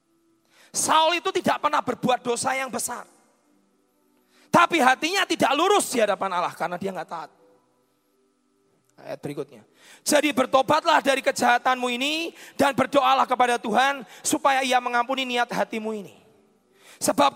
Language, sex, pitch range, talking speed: Indonesian, male, 250-335 Hz, 130 wpm